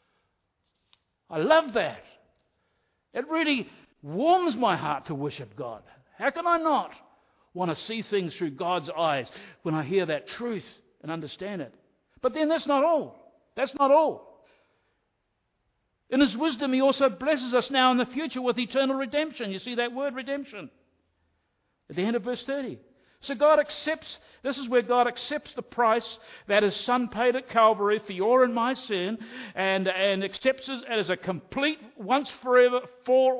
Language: English